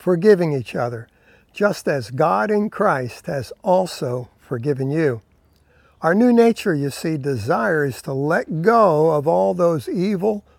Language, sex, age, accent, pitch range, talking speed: English, male, 60-79, American, 140-195 Hz, 140 wpm